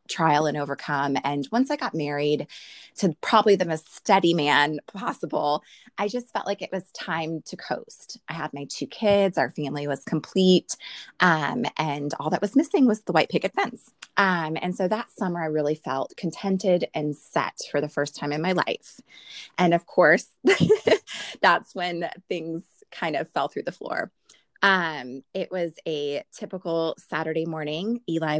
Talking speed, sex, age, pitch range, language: 175 wpm, female, 20-39, 145-185 Hz, English